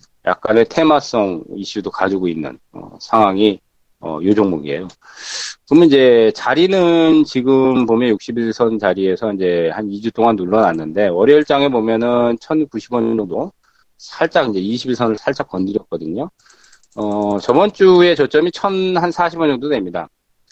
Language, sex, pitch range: Korean, male, 105-150 Hz